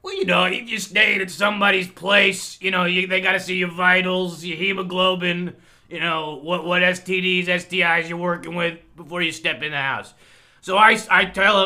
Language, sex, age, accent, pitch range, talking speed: English, male, 30-49, American, 160-200 Hz, 200 wpm